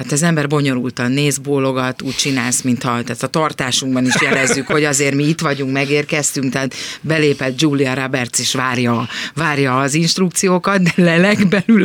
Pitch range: 130-160 Hz